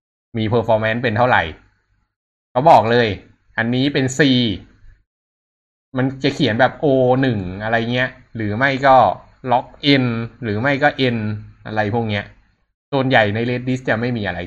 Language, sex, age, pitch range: Thai, male, 20-39, 95-125 Hz